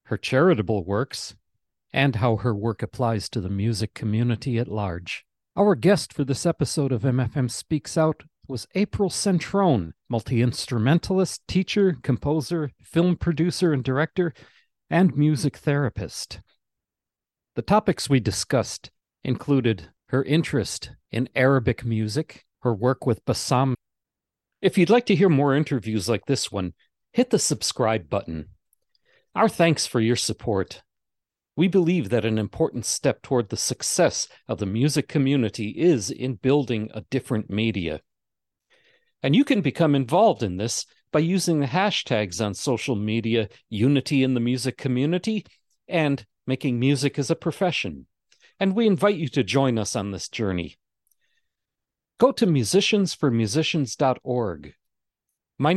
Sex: male